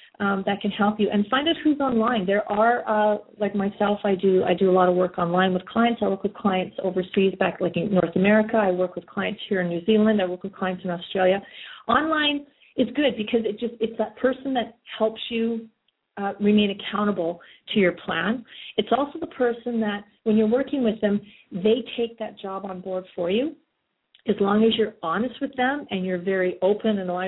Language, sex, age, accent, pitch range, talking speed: English, female, 40-59, American, 180-220 Hz, 220 wpm